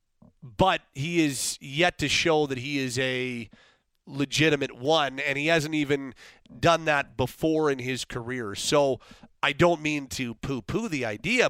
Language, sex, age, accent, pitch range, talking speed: English, male, 40-59, American, 135-170 Hz, 160 wpm